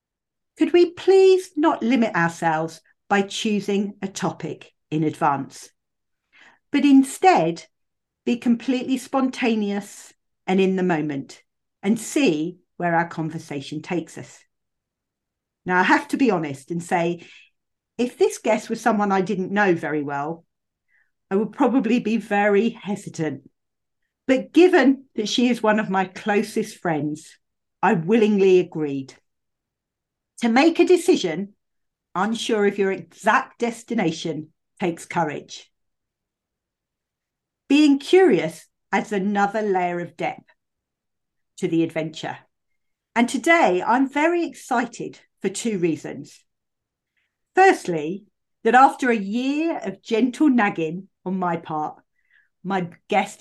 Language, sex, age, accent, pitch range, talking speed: English, female, 50-69, British, 170-245 Hz, 120 wpm